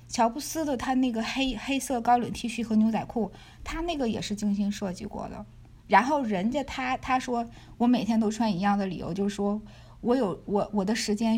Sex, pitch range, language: female, 200-245 Hz, Chinese